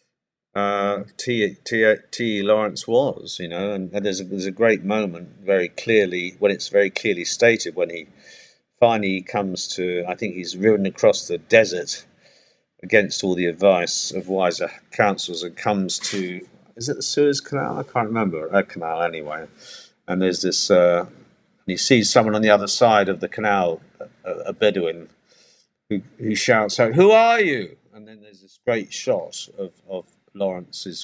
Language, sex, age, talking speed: English, male, 50-69, 170 wpm